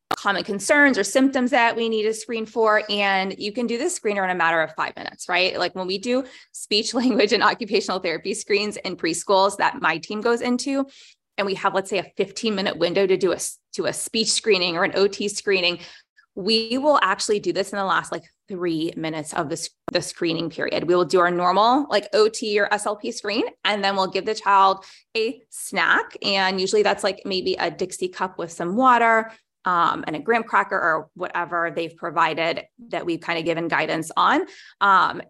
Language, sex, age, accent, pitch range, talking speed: English, female, 20-39, American, 180-220 Hz, 205 wpm